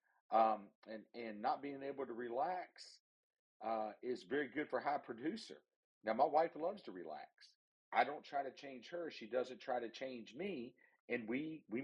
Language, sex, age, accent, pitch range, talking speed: English, male, 40-59, American, 95-125 Hz, 180 wpm